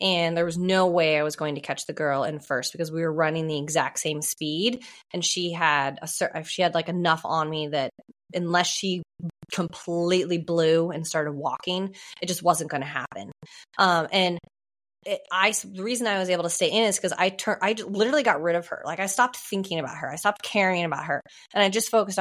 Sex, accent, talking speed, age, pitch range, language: female, American, 225 wpm, 20-39, 165-210 Hz, English